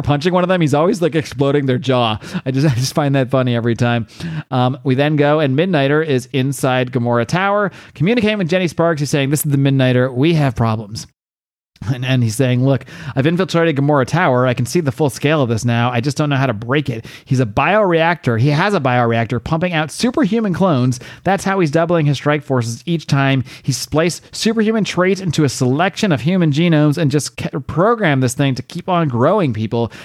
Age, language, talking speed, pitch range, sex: 30-49, English, 215 wpm, 120-160 Hz, male